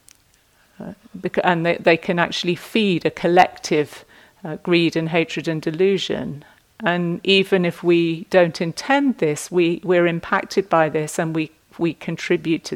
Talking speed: 150 wpm